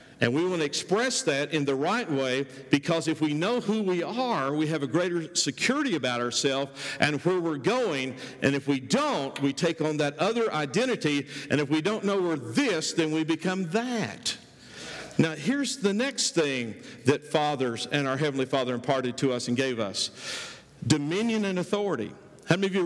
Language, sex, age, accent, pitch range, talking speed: English, male, 50-69, American, 140-180 Hz, 190 wpm